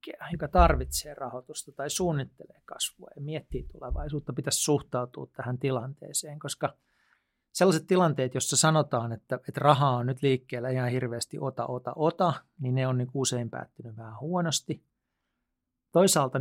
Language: Finnish